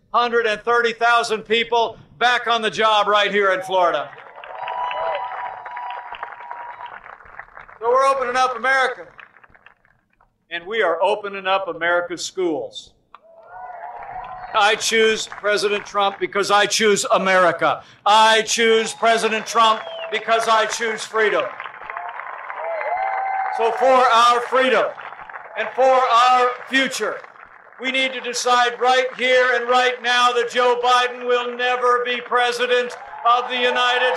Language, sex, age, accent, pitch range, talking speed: English, male, 60-79, American, 220-250 Hz, 115 wpm